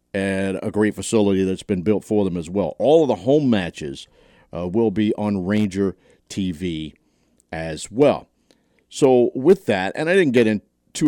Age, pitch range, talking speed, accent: 50-69, 95-115 Hz, 175 wpm, American